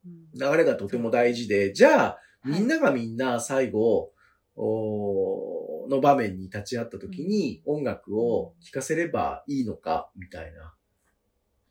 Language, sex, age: Japanese, male, 40-59